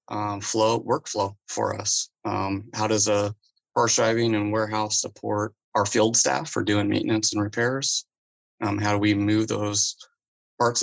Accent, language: American, English